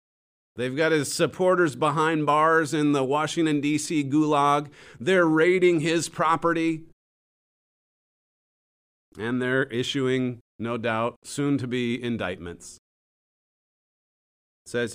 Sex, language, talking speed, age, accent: male, English, 95 wpm, 40-59, American